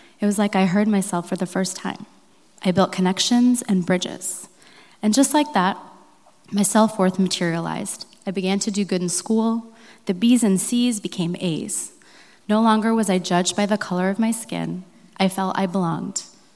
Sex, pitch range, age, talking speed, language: female, 180-225 Hz, 20-39, 180 wpm, English